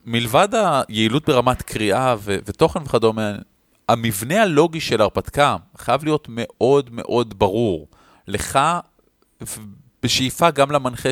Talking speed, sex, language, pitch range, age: 115 wpm, male, Hebrew, 110-145 Hz, 30-49